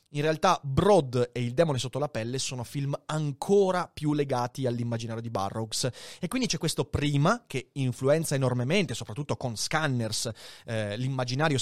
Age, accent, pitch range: 30-49, native, 125-195 Hz